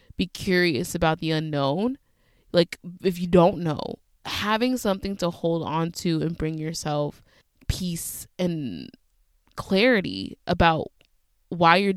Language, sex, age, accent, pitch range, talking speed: English, female, 20-39, American, 160-185 Hz, 125 wpm